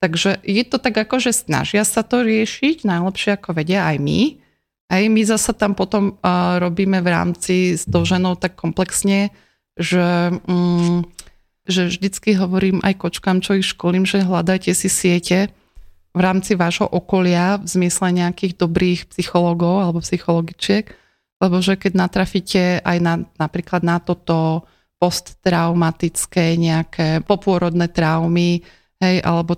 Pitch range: 175-205 Hz